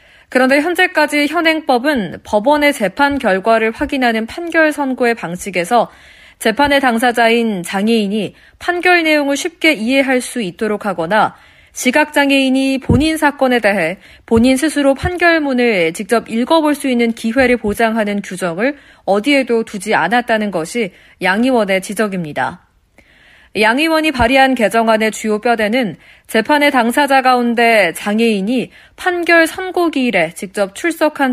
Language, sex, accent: Korean, female, native